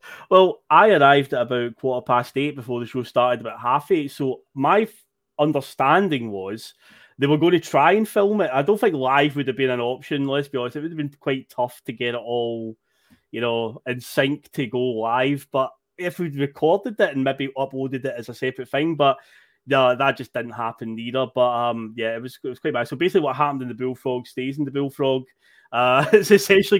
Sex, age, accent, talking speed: male, 20-39, British, 215 wpm